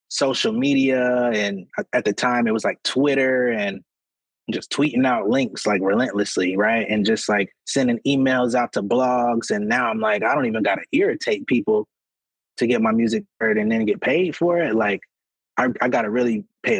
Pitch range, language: 105-135 Hz, English